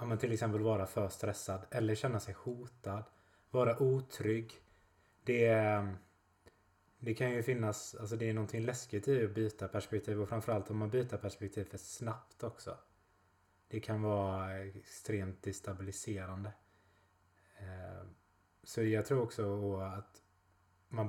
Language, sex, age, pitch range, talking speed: Swedish, male, 20-39, 95-115 Hz, 130 wpm